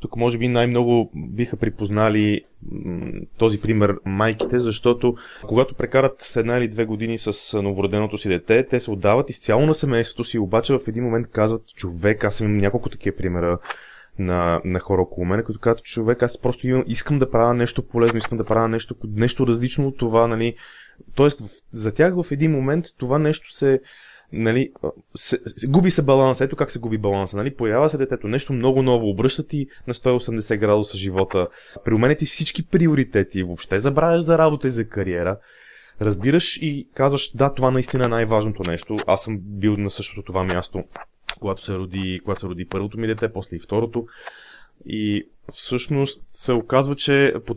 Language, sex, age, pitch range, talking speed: Bulgarian, male, 20-39, 105-130 Hz, 180 wpm